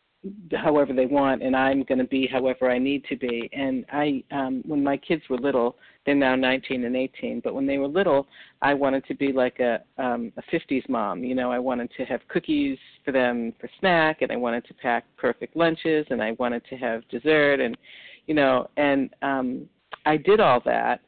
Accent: American